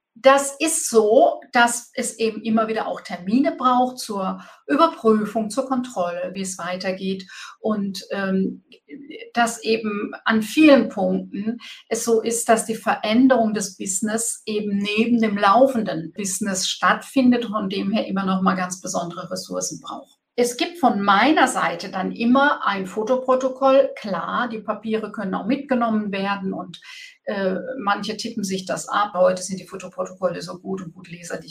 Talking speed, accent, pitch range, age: 155 wpm, German, 200-250 Hz, 50-69